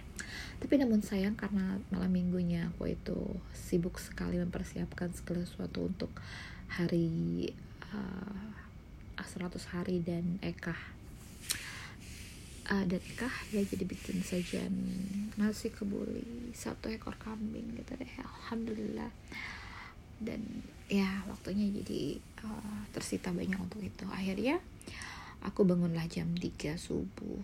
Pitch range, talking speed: 170-215 Hz, 105 wpm